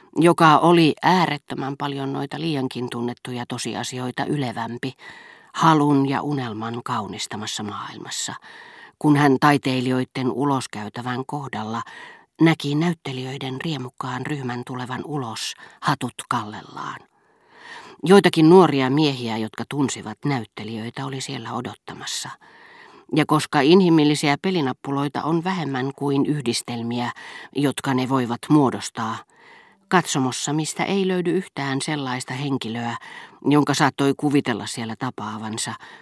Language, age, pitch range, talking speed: Finnish, 40-59, 125-160 Hz, 100 wpm